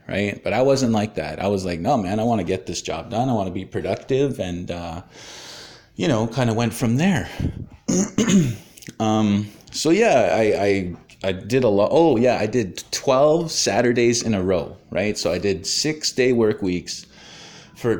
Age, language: 30-49, English